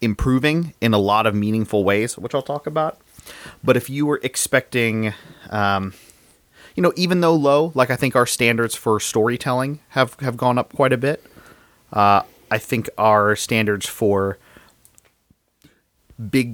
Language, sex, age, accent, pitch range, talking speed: English, male, 30-49, American, 105-130 Hz, 155 wpm